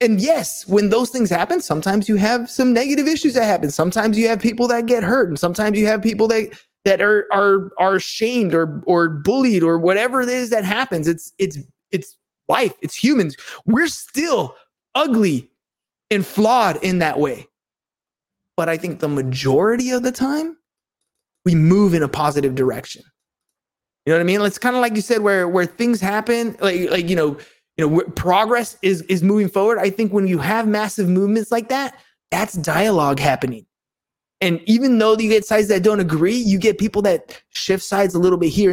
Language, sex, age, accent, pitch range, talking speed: English, male, 20-39, American, 175-225 Hz, 195 wpm